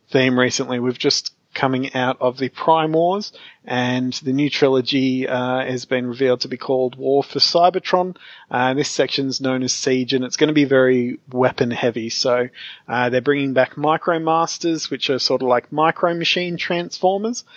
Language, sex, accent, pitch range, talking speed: English, male, Australian, 125-150 Hz, 180 wpm